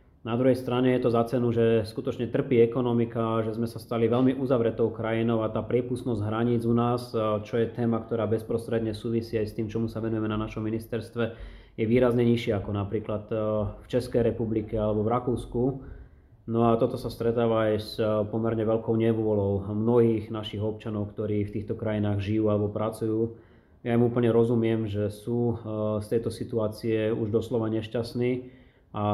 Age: 20-39